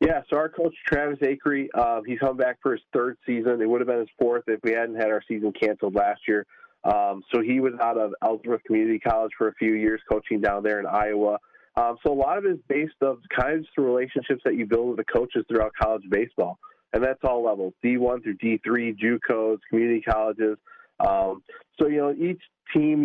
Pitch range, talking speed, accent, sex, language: 110-125 Hz, 220 wpm, American, male, English